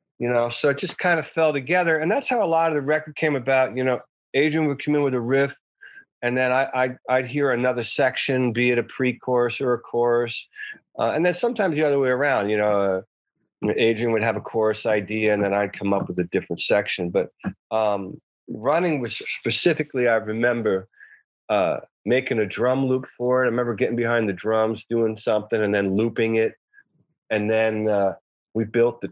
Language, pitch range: English, 110-150 Hz